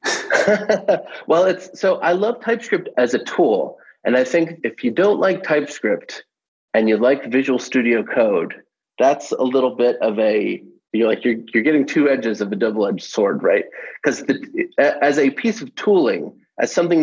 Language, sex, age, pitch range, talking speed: English, male, 30-49, 115-175 Hz, 175 wpm